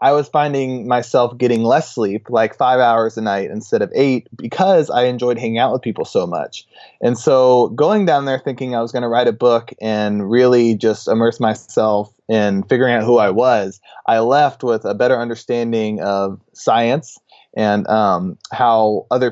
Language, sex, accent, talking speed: English, male, American, 185 wpm